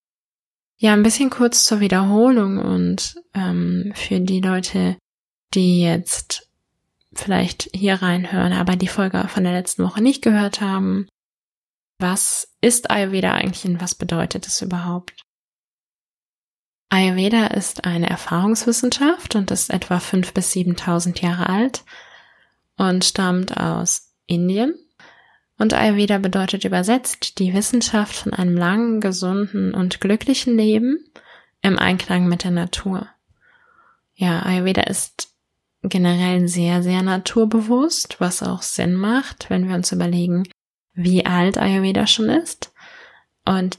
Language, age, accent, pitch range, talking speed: German, 20-39, German, 180-215 Hz, 125 wpm